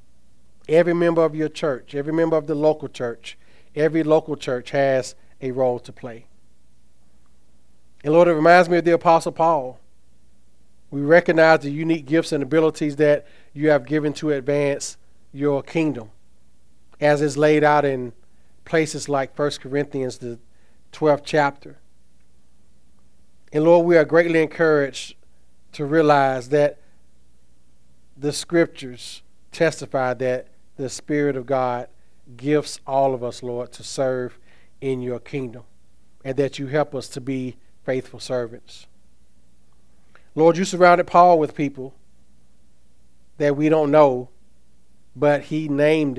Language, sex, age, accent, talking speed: English, male, 40-59, American, 135 wpm